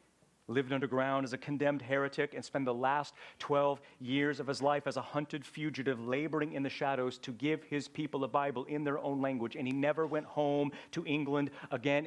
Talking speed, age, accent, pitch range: 205 wpm, 40-59, American, 135-170 Hz